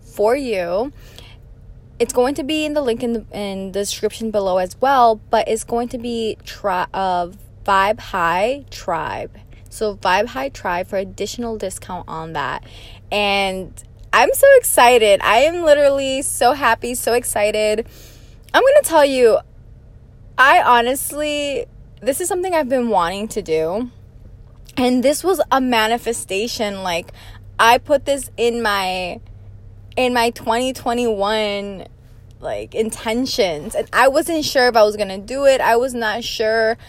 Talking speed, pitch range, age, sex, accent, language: 150 wpm, 200-255 Hz, 20-39, female, American, English